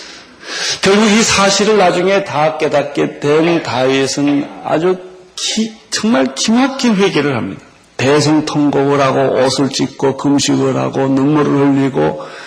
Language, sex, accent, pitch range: Korean, male, native, 135-180 Hz